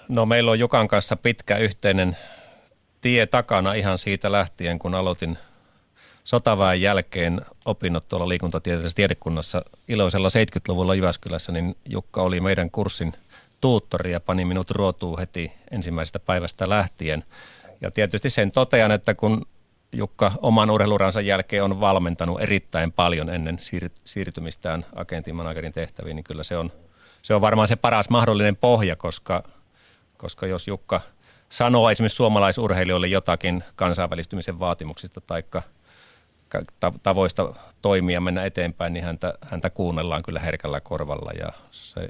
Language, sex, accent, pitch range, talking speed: Finnish, male, native, 85-105 Hz, 130 wpm